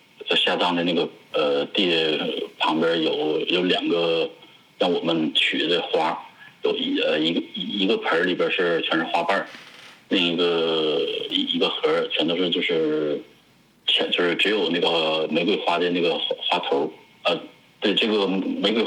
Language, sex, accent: Chinese, male, native